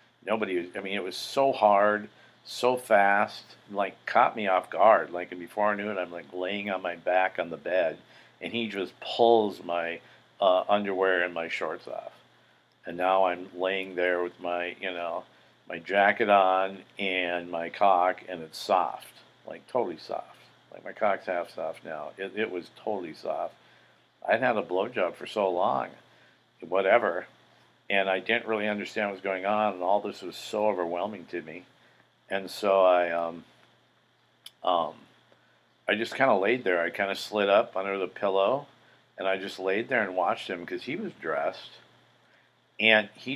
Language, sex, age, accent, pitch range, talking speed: English, male, 50-69, American, 90-110 Hz, 180 wpm